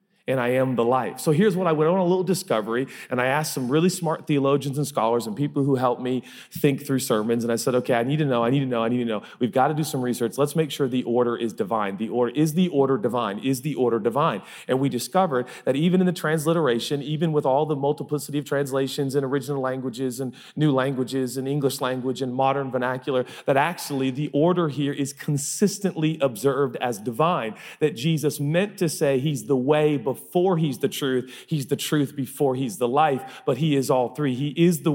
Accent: American